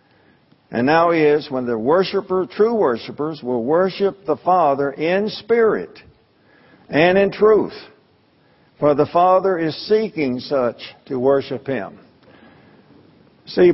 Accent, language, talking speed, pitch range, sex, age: American, English, 115 wpm, 145-185 Hz, male, 50-69